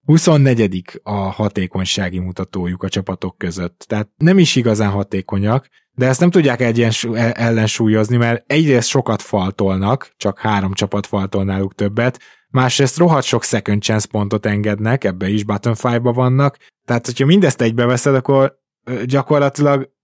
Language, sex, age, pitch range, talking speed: Hungarian, male, 20-39, 105-125 Hz, 140 wpm